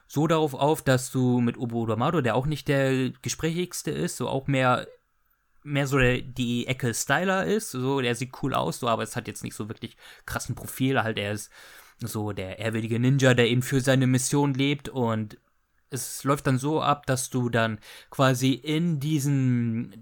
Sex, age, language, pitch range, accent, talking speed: male, 20-39, German, 115-145 Hz, German, 190 wpm